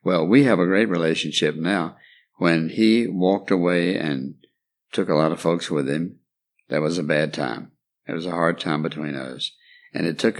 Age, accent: 60-79, American